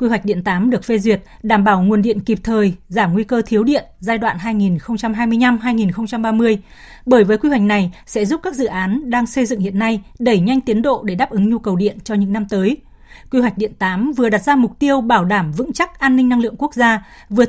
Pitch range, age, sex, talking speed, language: 205-245 Hz, 20-39, female, 240 wpm, Vietnamese